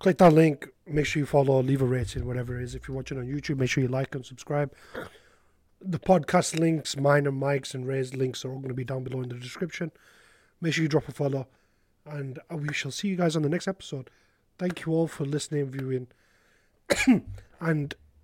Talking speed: 215 wpm